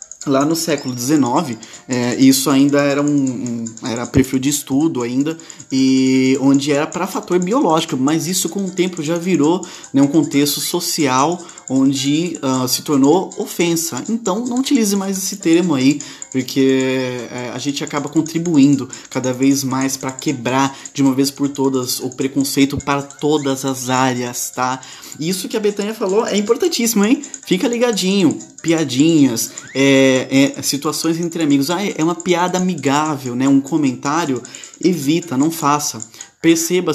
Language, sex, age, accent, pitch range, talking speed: Portuguese, male, 20-39, Brazilian, 135-180 Hz, 150 wpm